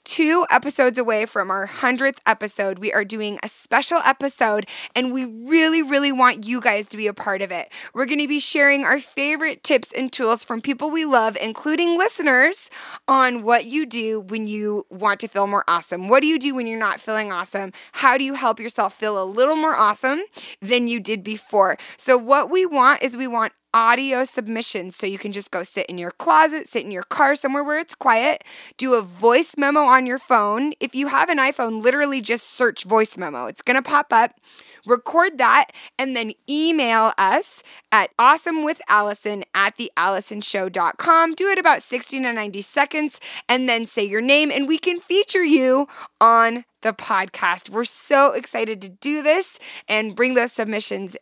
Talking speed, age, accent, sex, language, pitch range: 190 wpm, 20-39, American, female, English, 215-285 Hz